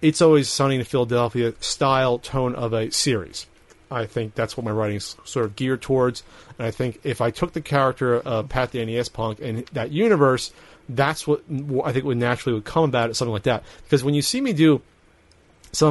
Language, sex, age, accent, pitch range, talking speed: English, male, 30-49, American, 120-150 Hz, 210 wpm